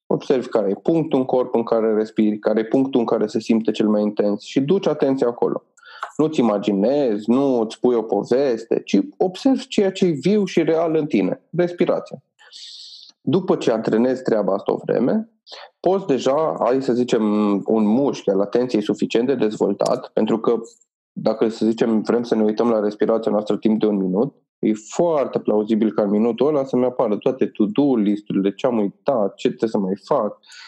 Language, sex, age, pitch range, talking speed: Romanian, male, 20-39, 110-145 Hz, 190 wpm